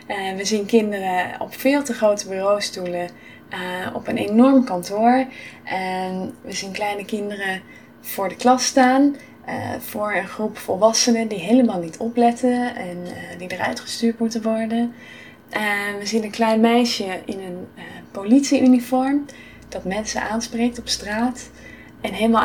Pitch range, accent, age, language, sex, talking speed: 195-235 Hz, Dutch, 20-39, Dutch, female, 130 wpm